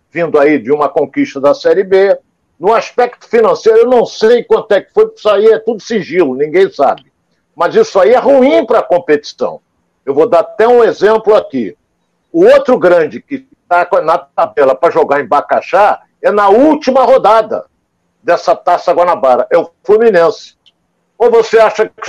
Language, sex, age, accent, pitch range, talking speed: Portuguese, male, 60-79, Brazilian, 190-280 Hz, 175 wpm